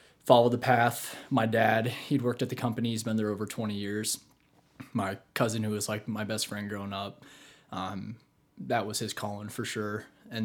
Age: 20-39